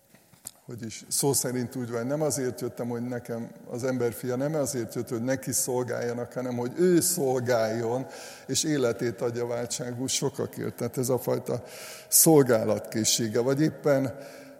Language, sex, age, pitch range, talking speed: Hungarian, male, 50-69, 120-140 Hz, 140 wpm